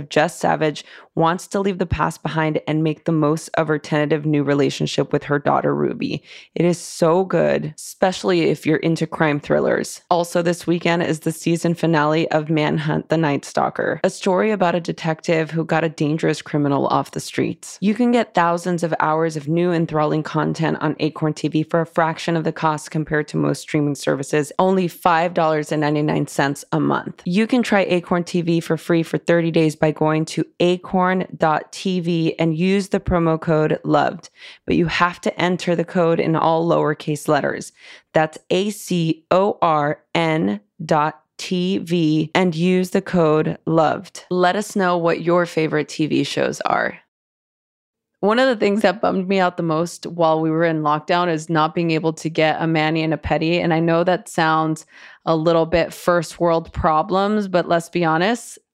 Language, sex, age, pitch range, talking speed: English, female, 20-39, 155-185 Hz, 180 wpm